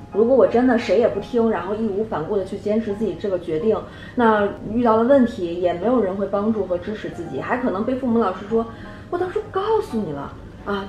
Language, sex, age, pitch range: Chinese, female, 20-39, 175-245 Hz